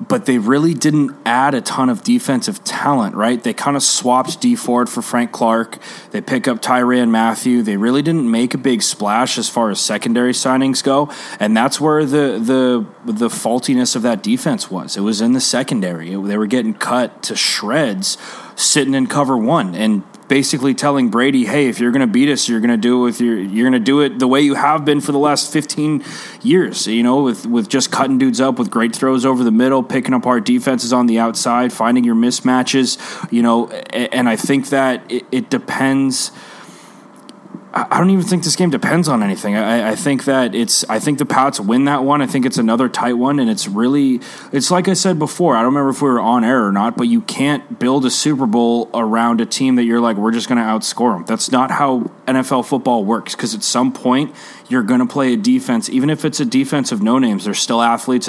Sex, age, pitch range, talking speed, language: male, 20-39, 120-155 Hz, 220 wpm, English